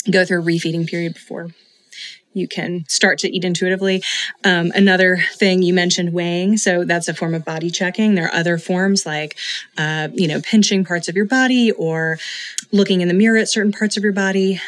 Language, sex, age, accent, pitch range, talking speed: English, female, 20-39, American, 165-195 Hz, 200 wpm